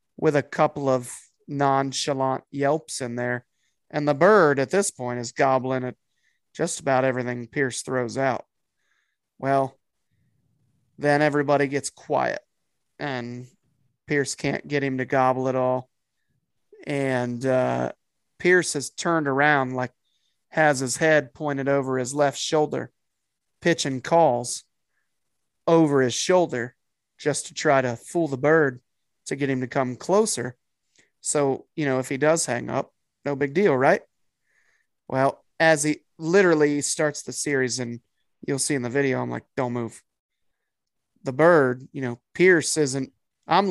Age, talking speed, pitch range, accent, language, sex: 30-49, 145 wpm, 130-150 Hz, American, English, male